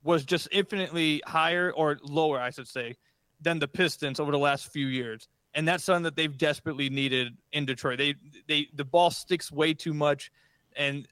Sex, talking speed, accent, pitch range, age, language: male, 190 wpm, American, 140-170 Hz, 30-49, English